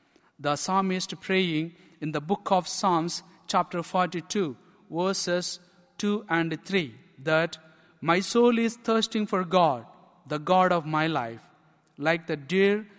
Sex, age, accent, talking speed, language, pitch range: male, 50-69, Indian, 135 wpm, English, 155-185 Hz